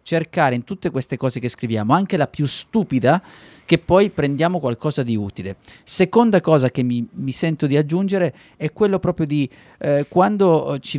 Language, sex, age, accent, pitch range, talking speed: Italian, male, 20-39, native, 125-170 Hz, 175 wpm